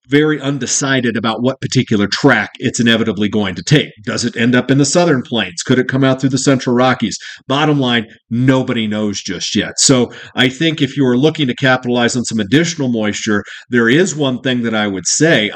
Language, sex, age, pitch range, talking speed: English, male, 40-59, 115-140 Hz, 210 wpm